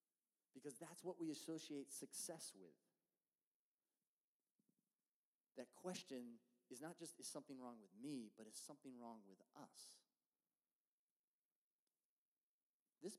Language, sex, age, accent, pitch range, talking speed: English, male, 30-49, American, 120-155 Hz, 110 wpm